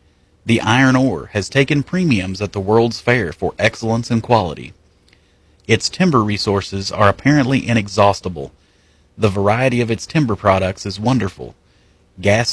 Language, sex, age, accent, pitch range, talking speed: English, male, 40-59, American, 95-130 Hz, 140 wpm